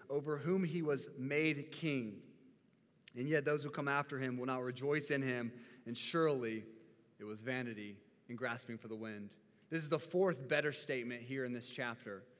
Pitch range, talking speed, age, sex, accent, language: 135-165 Hz, 185 wpm, 30-49, male, American, English